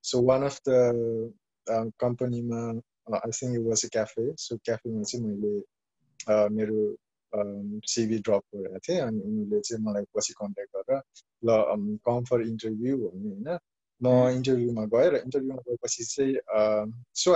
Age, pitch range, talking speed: 20-39, 115-145 Hz, 140 wpm